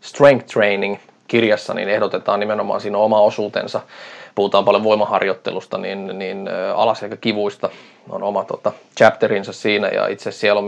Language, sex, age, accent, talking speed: Finnish, male, 20-39, native, 135 wpm